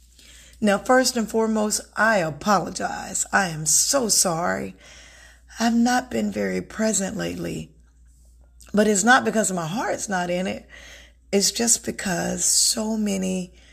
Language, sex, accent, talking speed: English, female, American, 130 wpm